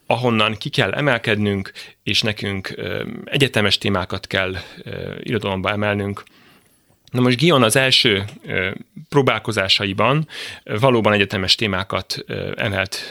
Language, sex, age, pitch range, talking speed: Hungarian, male, 30-49, 100-130 Hz, 95 wpm